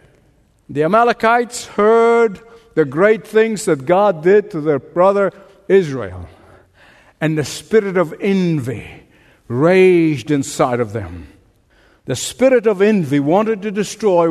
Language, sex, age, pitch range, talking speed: English, male, 60-79, 150-225 Hz, 120 wpm